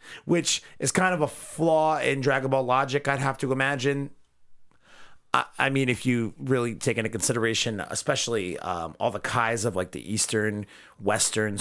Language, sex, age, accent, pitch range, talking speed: English, male, 30-49, American, 115-135 Hz, 170 wpm